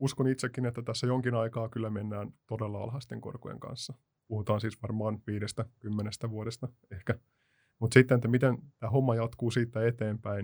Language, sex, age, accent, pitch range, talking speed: Finnish, male, 20-39, native, 115-130 Hz, 160 wpm